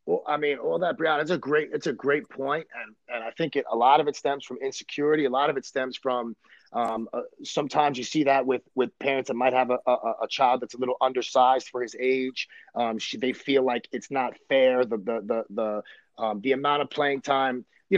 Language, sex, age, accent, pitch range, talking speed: English, male, 30-49, American, 130-185 Hz, 245 wpm